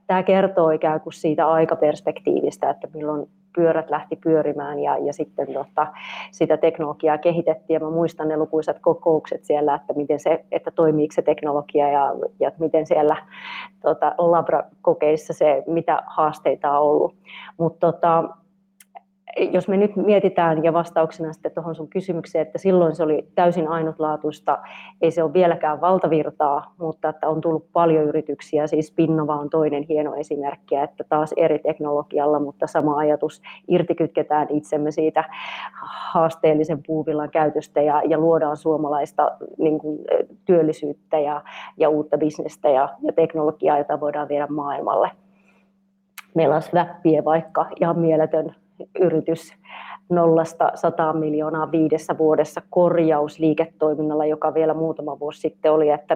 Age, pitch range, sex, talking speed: 30-49, 150-165 Hz, female, 135 wpm